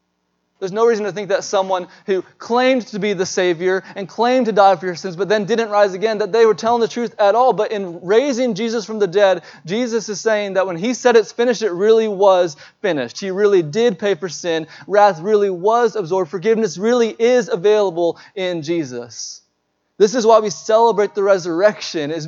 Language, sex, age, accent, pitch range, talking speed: English, male, 20-39, American, 180-225 Hz, 205 wpm